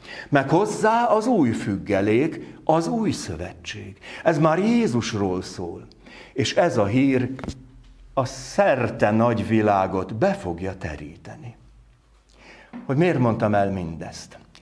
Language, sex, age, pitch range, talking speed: Hungarian, male, 60-79, 115-140 Hz, 110 wpm